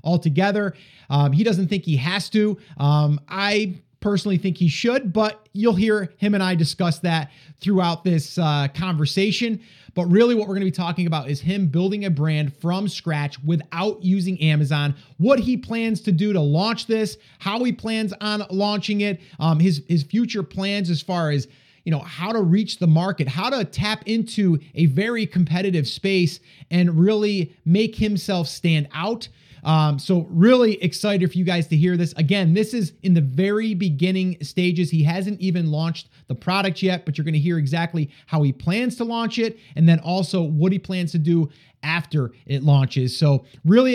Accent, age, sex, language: American, 30-49, male, English